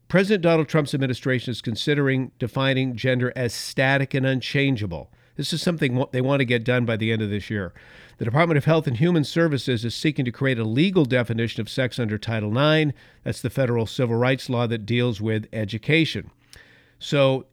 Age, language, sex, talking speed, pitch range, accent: 50-69, English, male, 190 wpm, 115-150 Hz, American